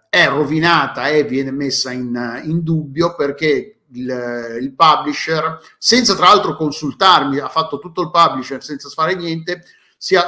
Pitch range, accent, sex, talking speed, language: 135-180 Hz, native, male, 160 wpm, Italian